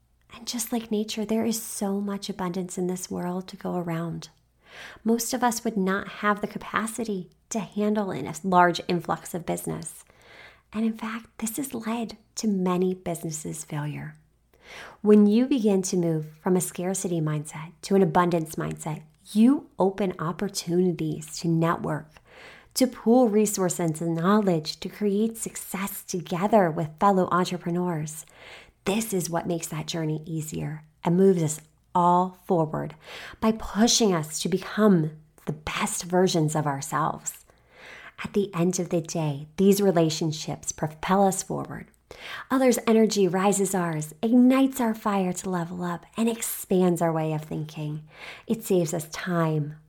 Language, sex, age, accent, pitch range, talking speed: English, female, 30-49, American, 165-210 Hz, 150 wpm